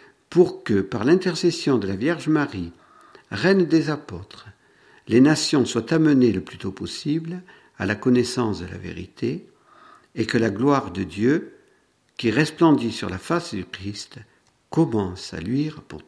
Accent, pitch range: French, 100-170 Hz